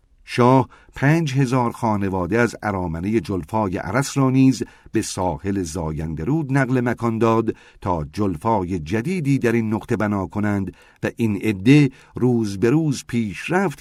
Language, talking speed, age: Persian, 135 wpm, 50-69